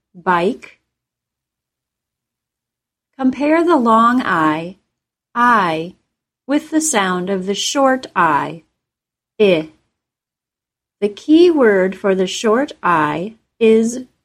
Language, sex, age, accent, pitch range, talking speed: English, female, 30-49, American, 195-255 Hz, 95 wpm